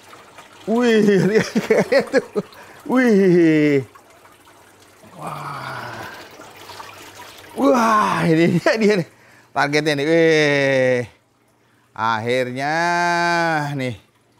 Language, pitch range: Indonesian, 120-155 Hz